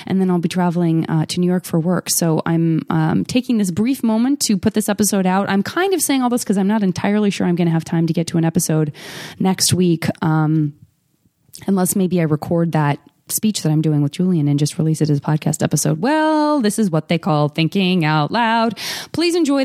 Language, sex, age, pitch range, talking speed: English, female, 20-39, 155-195 Hz, 235 wpm